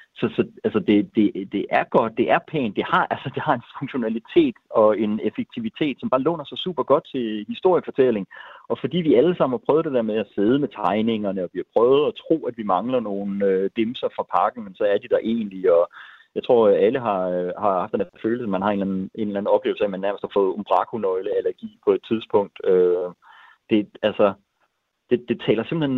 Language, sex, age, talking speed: Danish, male, 30-49, 230 wpm